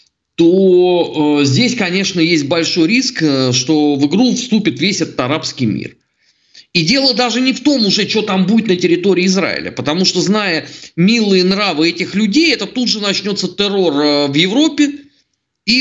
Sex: male